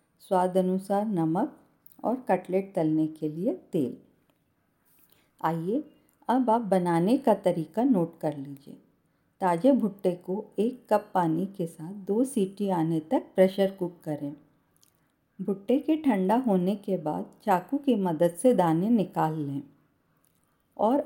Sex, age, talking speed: female, 50-69, 135 wpm